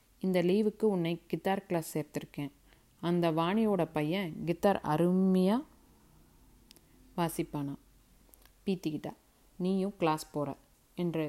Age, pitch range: 30-49, 160-190 Hz